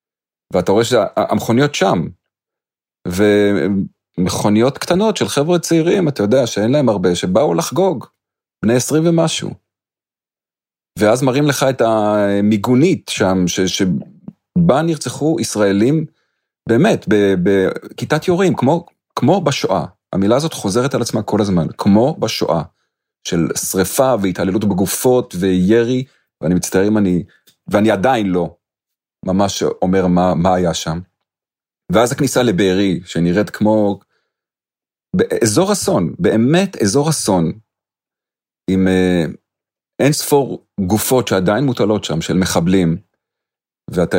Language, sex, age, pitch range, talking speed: Hebrew, male, 40-59, 95-135 Hz, 110 wpm